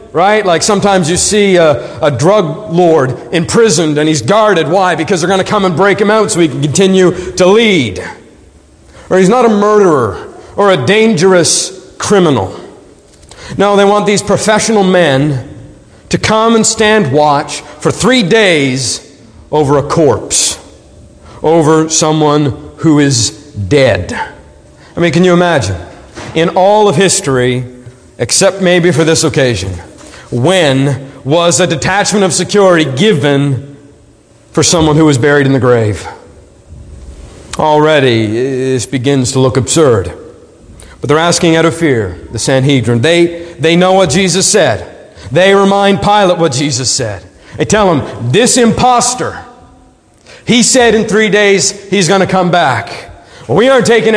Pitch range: 140-200 Hz